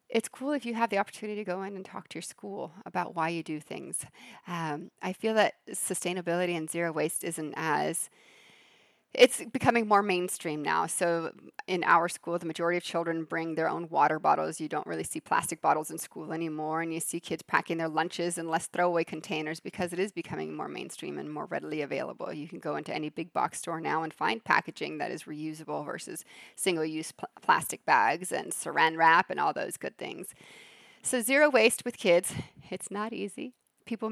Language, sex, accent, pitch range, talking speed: English, female, American, 165-210 Hz, 200 wpm